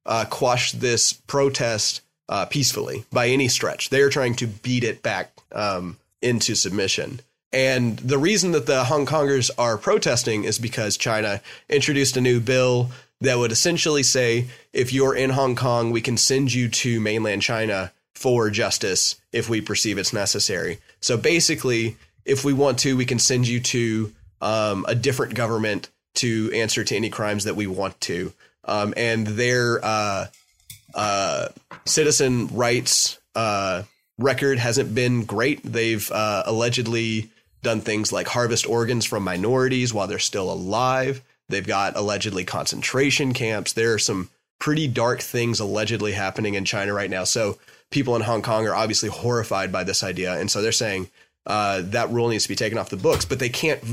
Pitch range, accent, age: 110-130 Hz, American, 30-49